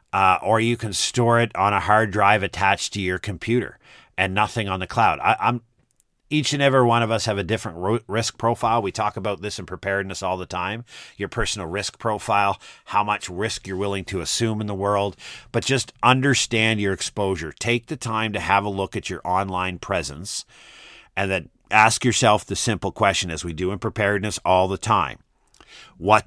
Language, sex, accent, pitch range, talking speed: English, male, American, 95-115 Hz, 200 wpm